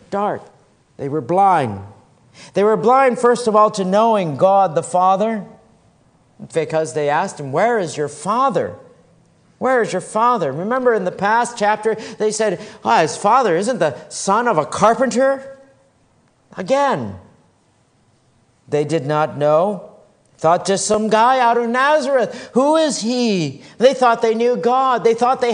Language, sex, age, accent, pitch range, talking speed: English, male, 50-69, American, 150-235 Hz, 155 wpm